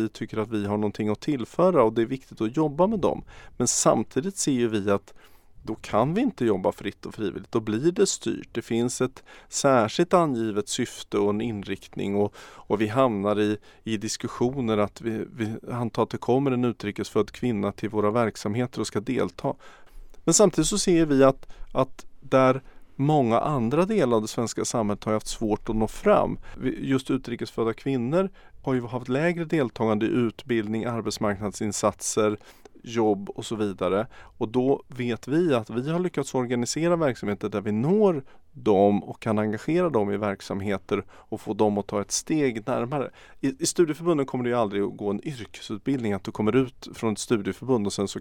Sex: male